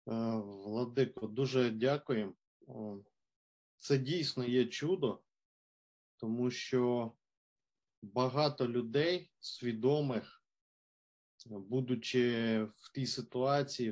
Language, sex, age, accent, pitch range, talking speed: Ukrainian, male, 20-39, native, 120-145 Hz, 70 wpm